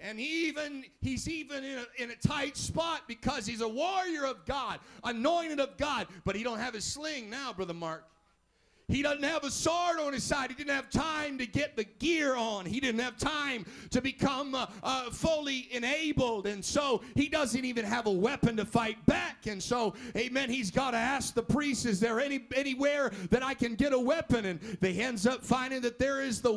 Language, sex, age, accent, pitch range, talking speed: English, male, 40-59, American, 230-285 Hz, 215 wpm